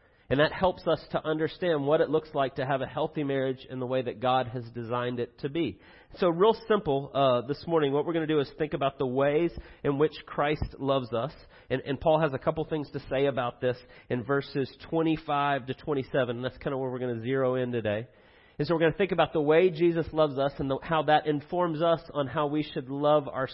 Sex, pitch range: male, 130-160 Hz